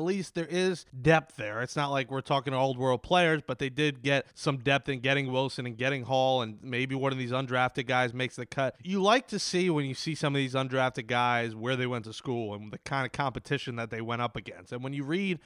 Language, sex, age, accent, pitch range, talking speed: English, male, 30-49, American, 130-165 Hz, 265 wpm